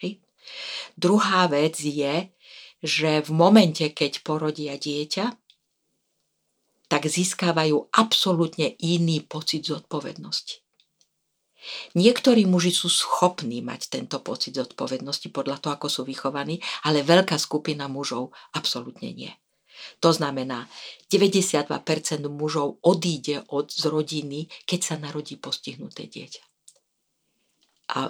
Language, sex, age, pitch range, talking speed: Slovak, female, 50-69, 145-175 Hz, 105 wpm